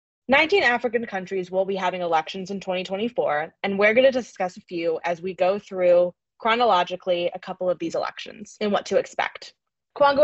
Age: 20-39